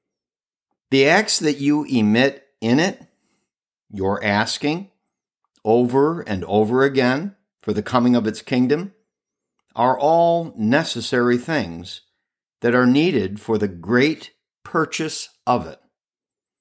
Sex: male